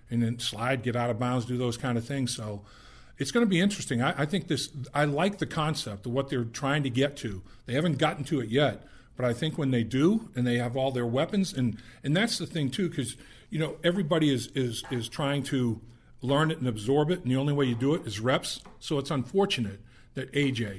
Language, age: English, 50-69